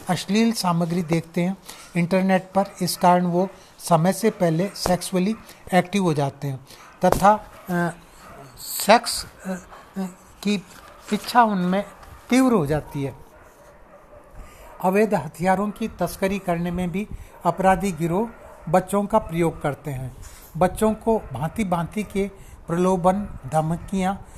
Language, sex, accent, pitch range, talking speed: Hindi, male, native, 175-200 Hz, 125 wpm